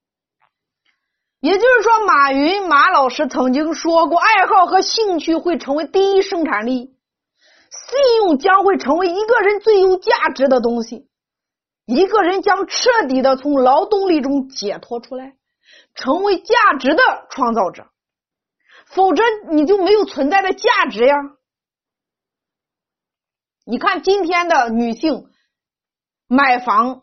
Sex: female